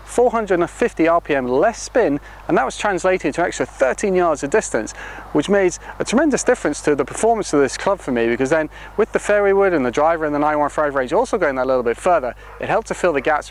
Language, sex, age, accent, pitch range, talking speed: English, male, 30-49, British, 130-160 Hz, 235 wpm